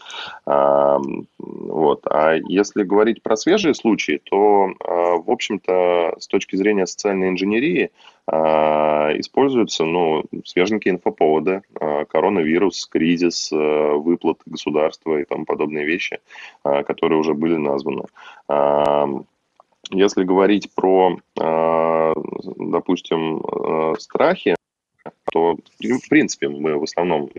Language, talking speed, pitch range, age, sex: Russian, 90 wpm, 75-90 Hz, 20-39, male